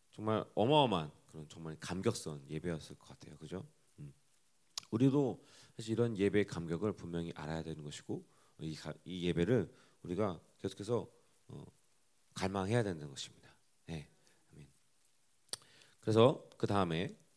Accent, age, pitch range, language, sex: native, 40-59, 85-130 Hz, Korean, male